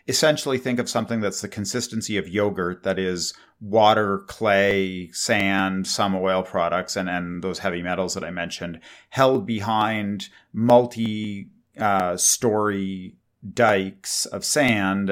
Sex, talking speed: male, 125 wpm